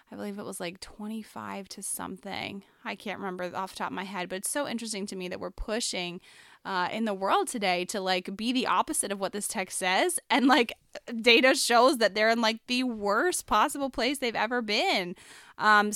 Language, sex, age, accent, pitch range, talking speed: English, female, 20-39, American, 190-230 Hz, 215 wpm